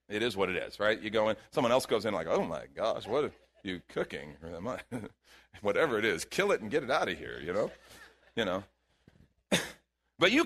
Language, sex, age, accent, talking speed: English, male, 40-59, American, 220 wpm